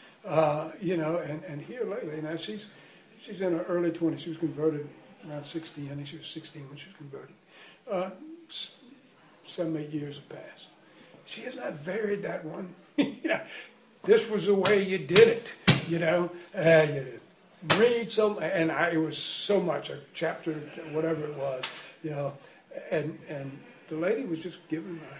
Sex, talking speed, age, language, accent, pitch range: male, 180 wpm, 60-79, English, American, 150-190 Hz